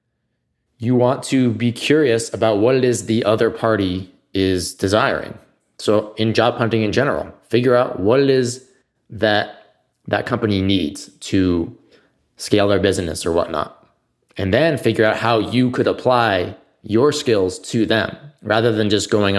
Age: 20-39